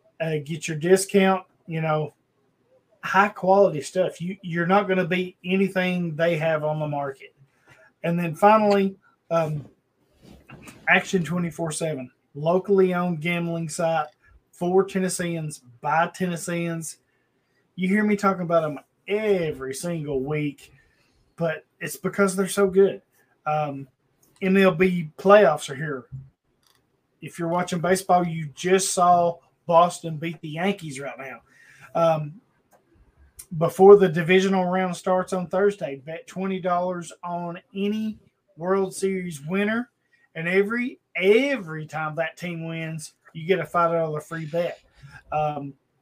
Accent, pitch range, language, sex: American, 160-190 Hz, English, male